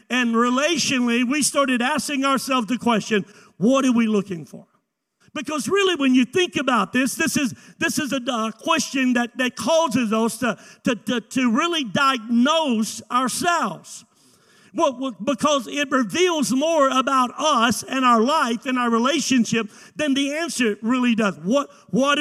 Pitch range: 230-290 Hz